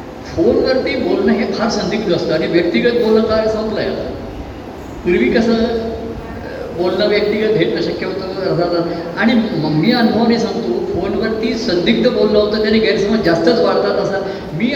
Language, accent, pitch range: Marathi, native, 165-230 Hz